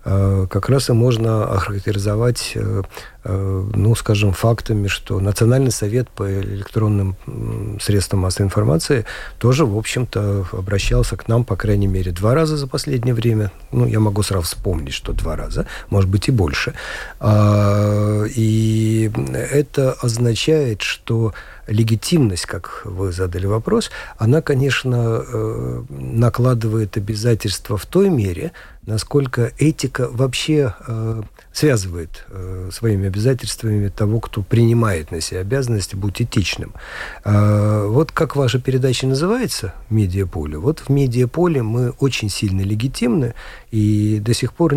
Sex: male